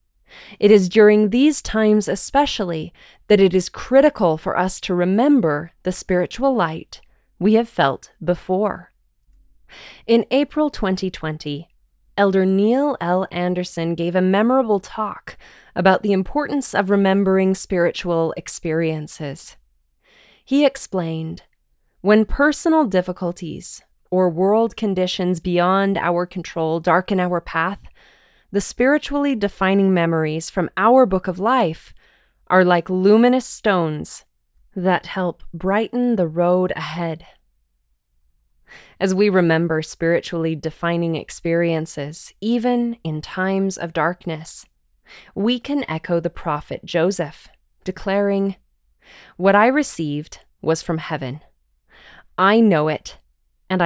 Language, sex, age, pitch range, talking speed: English, female, 20-39, 165-210 Hz, 110 wpm